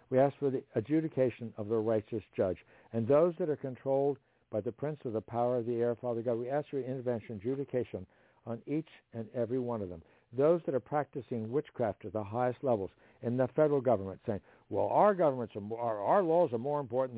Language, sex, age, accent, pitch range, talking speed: English, male, 60-79, American, 115-140 Hz, 210 wpm